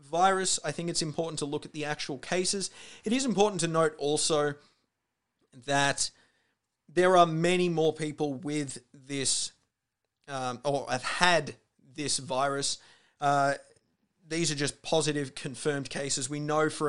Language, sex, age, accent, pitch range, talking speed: English, male, 30-49, Australian, 135-155 Hz, 145 wpm